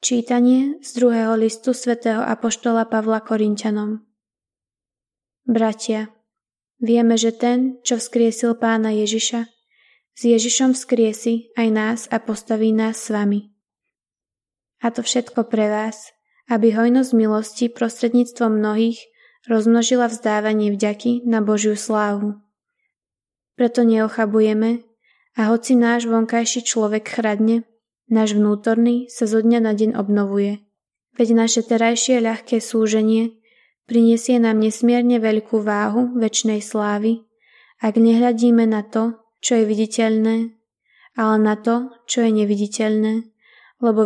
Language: Slovak